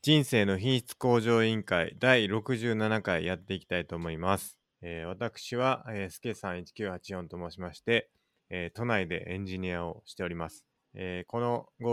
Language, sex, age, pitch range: Japanese, male, 20-39, 85-110 Hz